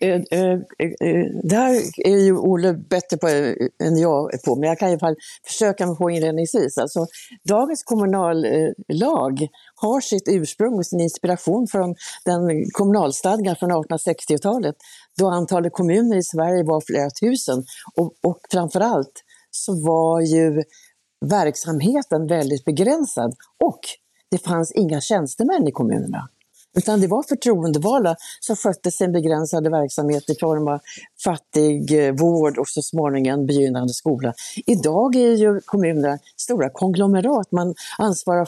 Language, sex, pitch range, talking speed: Swedish, female, 155-200 Hz, 130 wpm